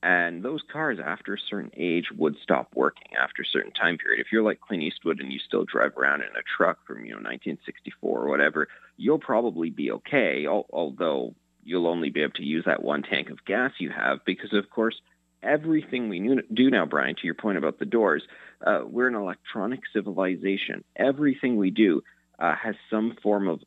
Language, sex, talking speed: English, male, 200 wpm